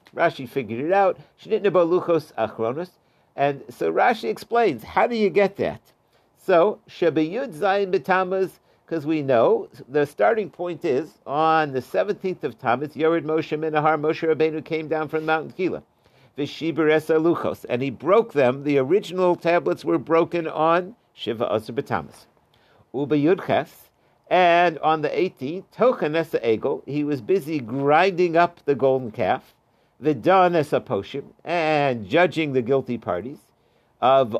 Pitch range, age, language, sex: 145-185 Hz, 60-79, English, male